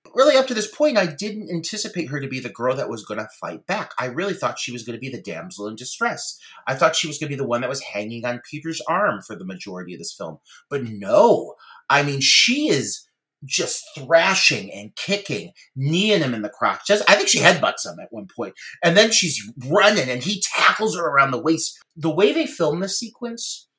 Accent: American